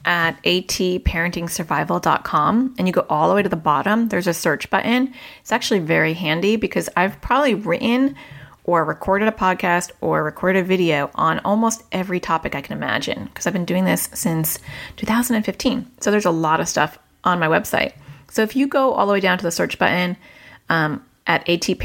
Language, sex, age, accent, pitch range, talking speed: English, female, 30-49, American, 170-220 Hz, 180 wpm